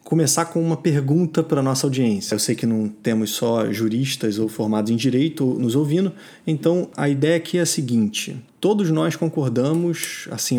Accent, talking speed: Brazilian, 180 wpm